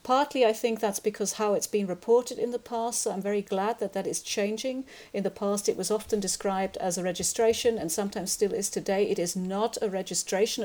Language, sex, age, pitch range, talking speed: English, female, 40-59, 185-220 Hz, 220 wpm